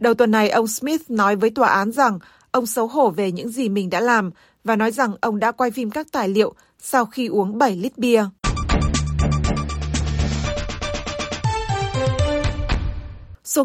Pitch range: 200-245 Hz